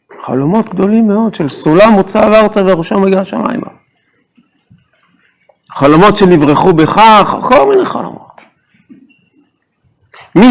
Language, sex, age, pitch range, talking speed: Hebrew, male, 50-69, 145-215 Hz, 95 wpm